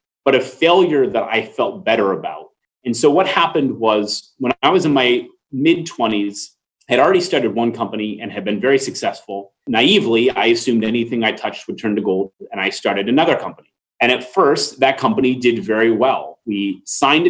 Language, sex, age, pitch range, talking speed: English, male, 30-49, 105-130 Hz, 190 wpm